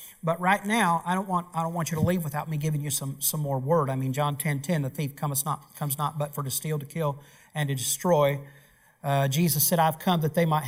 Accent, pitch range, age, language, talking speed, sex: American, 150-190 Hz, 50-69, English, 265 wpm, male